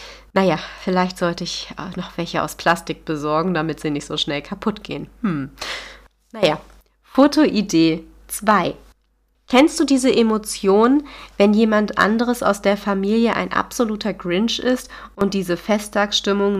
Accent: German